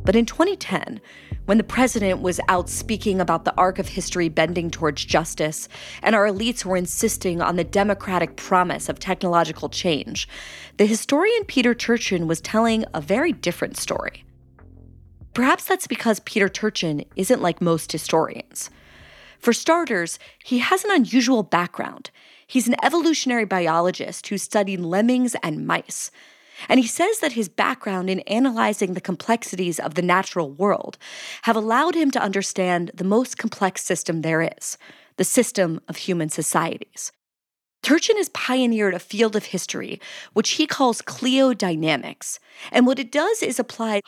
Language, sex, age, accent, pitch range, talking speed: English, female, 30-49, American, 180-250 Hz, 150 wpm